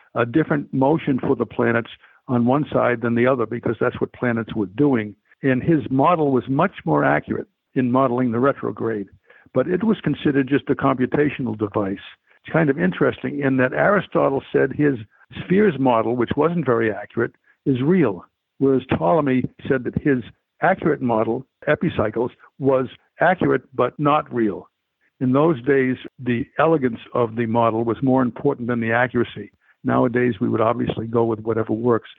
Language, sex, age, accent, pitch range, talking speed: English, male, 60-79, American, 120-145 Hz, 165 wpm